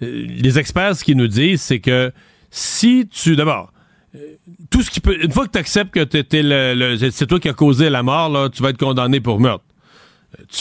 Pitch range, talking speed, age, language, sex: 140-185 Hz, 220 wpm, 40-59, French, male